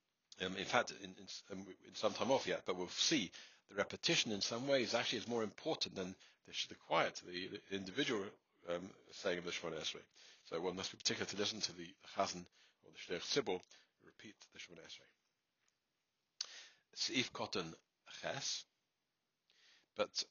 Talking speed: 170 wpm